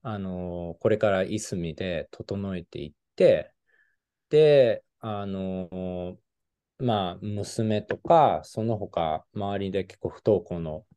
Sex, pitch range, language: male, 90-125 Hz, Japanese